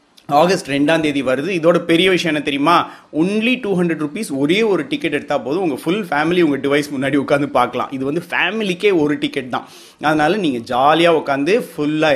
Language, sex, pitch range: Tamil, male, 130-175 Hz